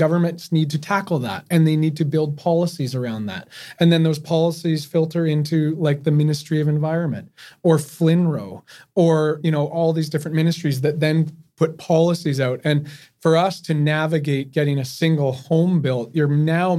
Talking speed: 180 wpm